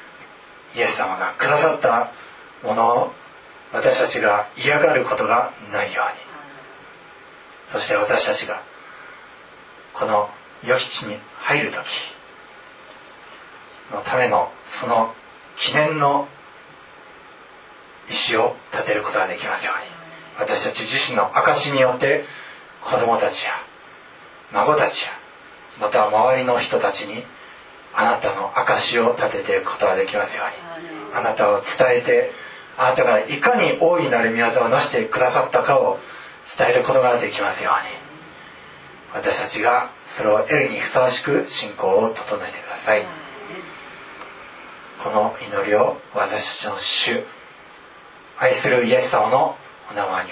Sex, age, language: male, 40-59, Japanese